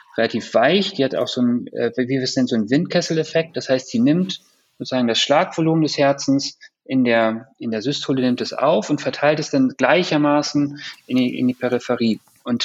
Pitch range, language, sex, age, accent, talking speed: 125-155 Hz, German, male, 30-49, German, 165 wpm